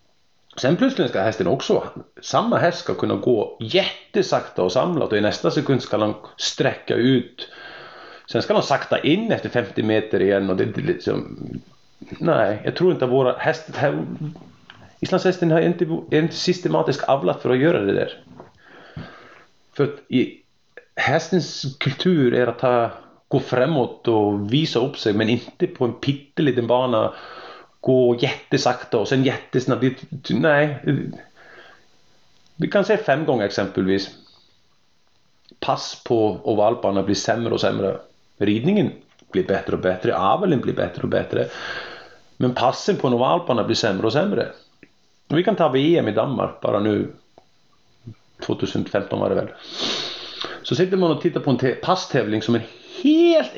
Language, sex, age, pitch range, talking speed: Swedish, male, 30-49, 120-165 Hz, 150 wpm